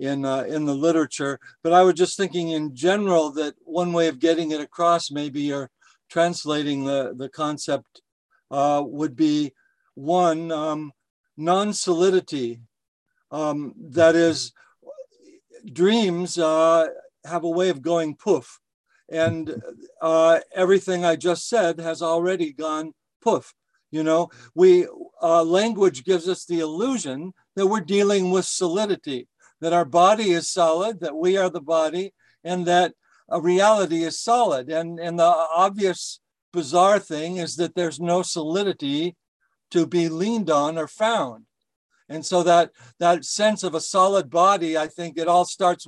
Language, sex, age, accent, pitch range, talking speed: English, male, 60-79, American, 155-185 Hz, 150 wpm